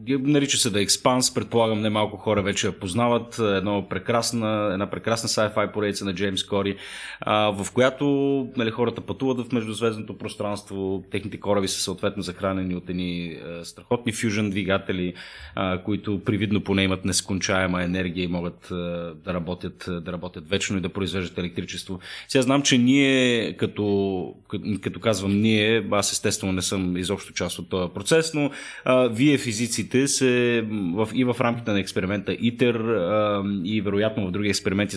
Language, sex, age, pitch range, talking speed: Bulgarian, male, 30-49, 95-125 Hz, 150 wpm